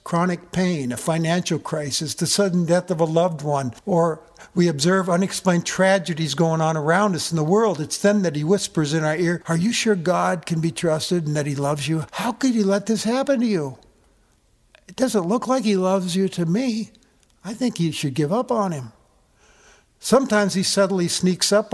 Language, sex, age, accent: English, male, 60-79, American